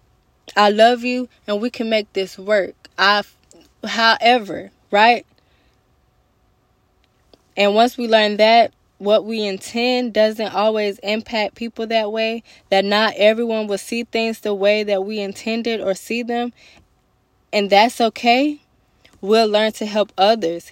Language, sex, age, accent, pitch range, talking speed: English, female, 10-29, American, 190-220 Hz, 135 wpm